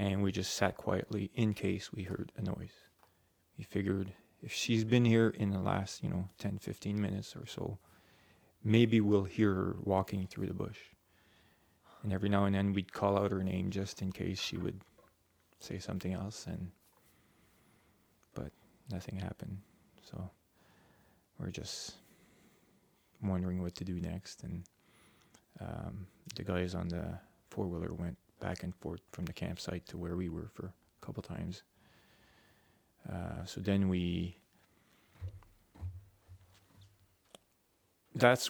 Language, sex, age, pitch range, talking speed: English, male, 20-39, 95-105 Hz, 145 wpm